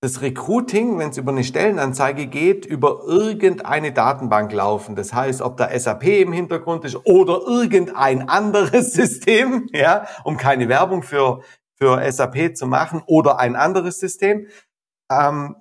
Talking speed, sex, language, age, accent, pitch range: 145 wpm, male, German, 50-69, German, 135-195 Hz